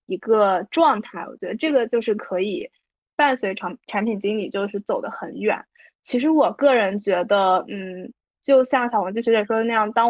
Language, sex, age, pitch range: Chinese, female, 10-29, 200-255 Hz